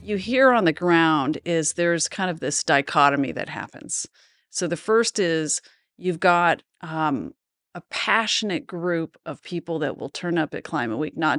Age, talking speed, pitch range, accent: 40-59, 175 wpm, 155-180 Hz, American